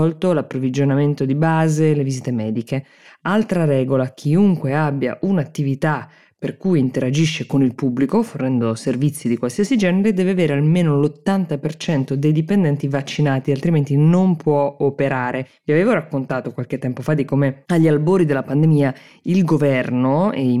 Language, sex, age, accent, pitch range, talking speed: Italian, female, 20-39, native, 130-155 Hz, 145 wpm